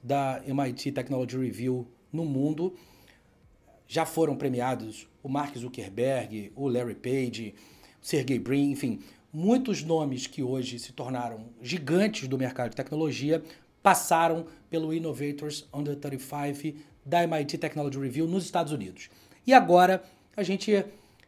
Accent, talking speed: Brazilian, 130 wpm